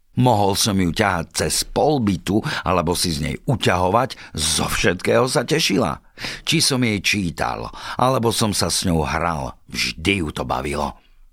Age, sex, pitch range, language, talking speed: 50-69, male, 85-120 Hz, Slovak, 155 wpm